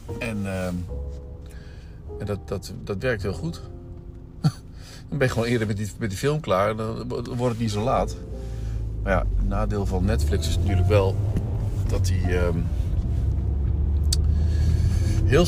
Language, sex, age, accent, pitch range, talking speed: Dutch, male, 50-69, Dutch, 80-100 Hz, 145 wpm